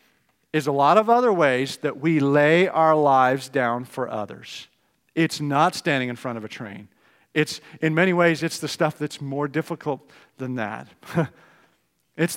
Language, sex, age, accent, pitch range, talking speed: English, male, 50-69, American, 130-165 Hz, 170 wpm